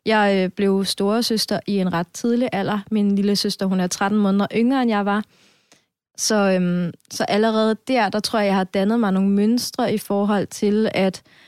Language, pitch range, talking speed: Danish, 190-220 Hz, 200 wpm